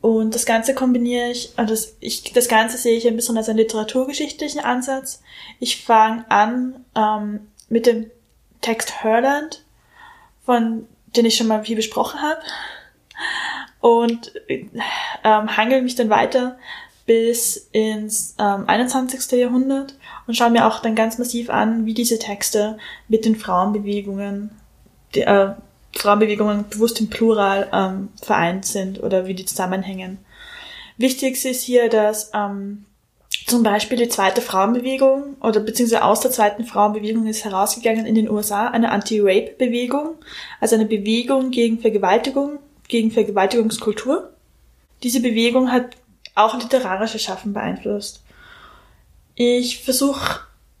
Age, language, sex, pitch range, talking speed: 10-29, German, female, 210-250 Hz, 130 wpm